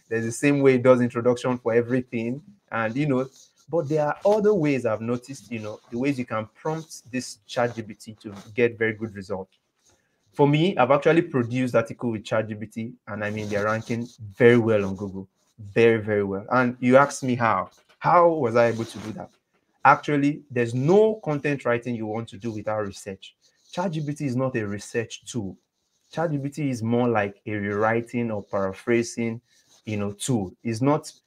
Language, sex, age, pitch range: English, male, 30-49, 110-135 Hz